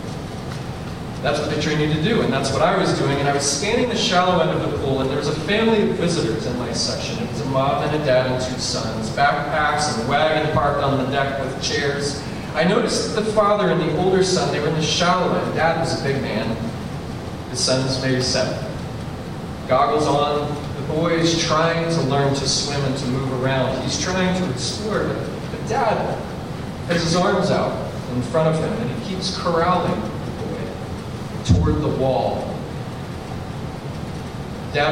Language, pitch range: English, 135-170 Hz